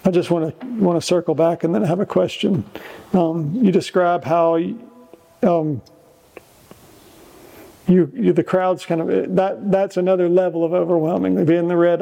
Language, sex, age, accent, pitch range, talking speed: English, male, 50-69, American, 165-185 Hz, 170 wpm